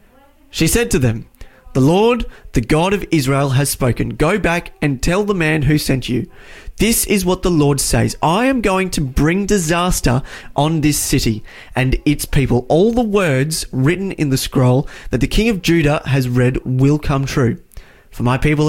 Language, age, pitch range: English, 30-49, 125-165 Hz